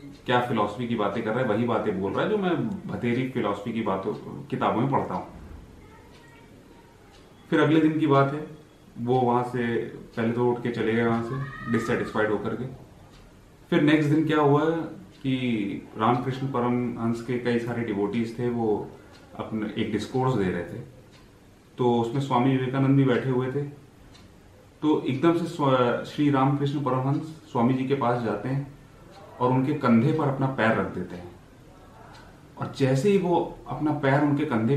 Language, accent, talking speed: Hindi, native, 170 wpm